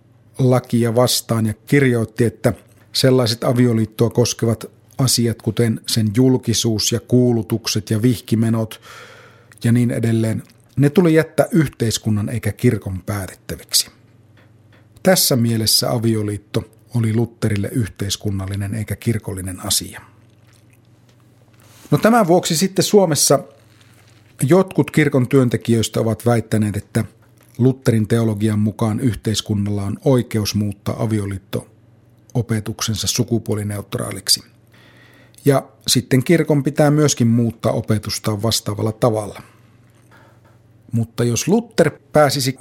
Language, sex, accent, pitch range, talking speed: Finnish, male, native, 110-125 Hz, 95 wpm